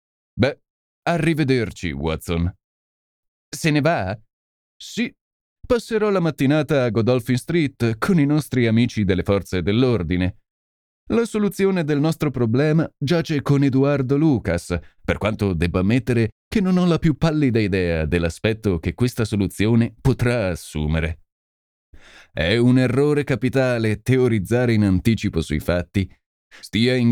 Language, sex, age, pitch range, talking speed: Italian, male, 30-49, 90-140 Hz, 125 wpm